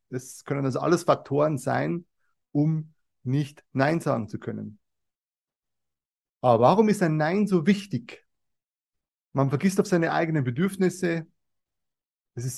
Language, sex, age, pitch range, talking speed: German, male, 30-49, 130-185 Hz, 130 wpm